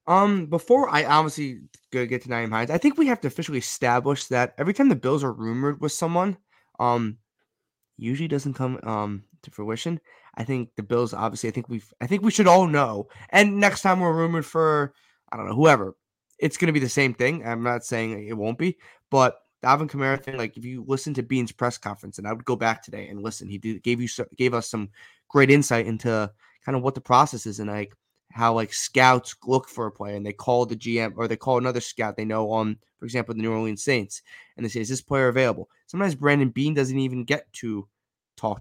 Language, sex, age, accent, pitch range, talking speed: English, male, 20-39, American, 110-145 Hz, 230 wpm